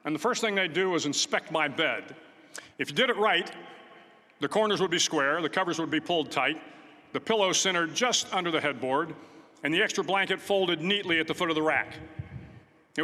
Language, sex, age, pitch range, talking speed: English, male, 50-69, 155-195 Hz, 210 wpm